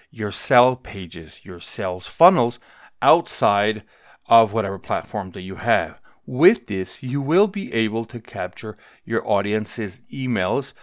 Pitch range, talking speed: 105-130 Hz, 135 wpm